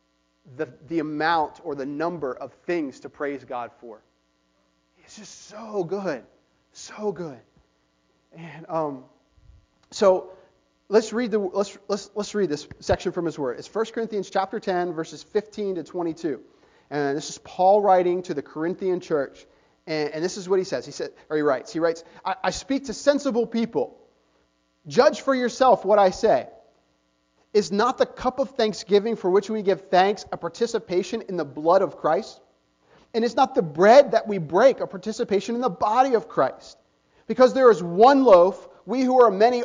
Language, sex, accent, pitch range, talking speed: English, male, American, 155-235 Hz, 180 wpm